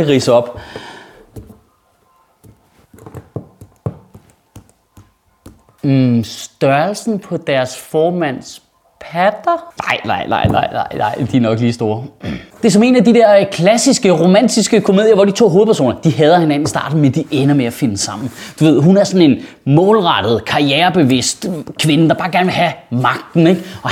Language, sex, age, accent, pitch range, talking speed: Danish, male, 30-49, native, 140-195 Hz, 155 wpm